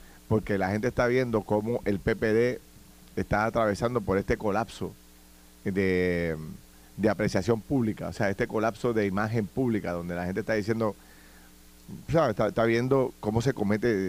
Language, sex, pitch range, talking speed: Spanish, male, 95-120 Hz, 150 wpm